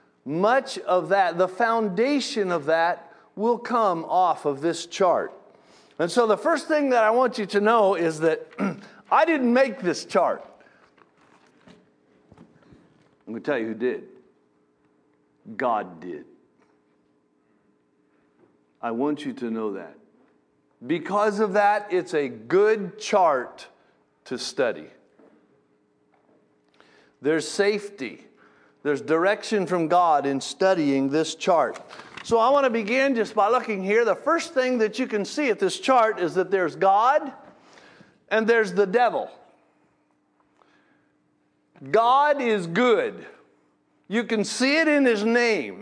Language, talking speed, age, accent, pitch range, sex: English, 135 wpm, 50-69, American, 160-240 Hz, male